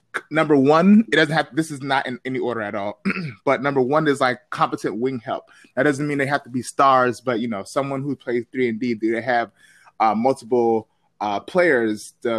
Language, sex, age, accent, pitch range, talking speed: English, male, 20-39, American, 120-145 Hz, 230 wpm